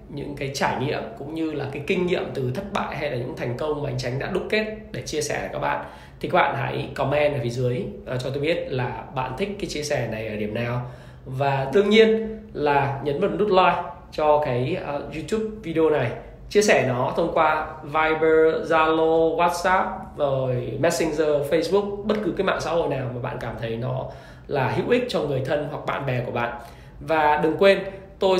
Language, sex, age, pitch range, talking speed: Vietnamese, male, 20-39, 135-175 Hz, 220 wpm